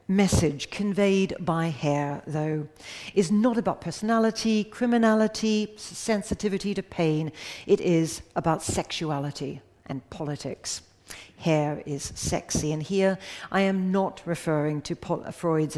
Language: English